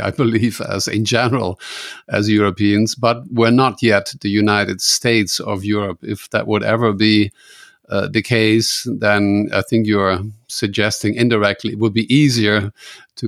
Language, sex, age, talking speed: English, male, 50-69, 165 wpm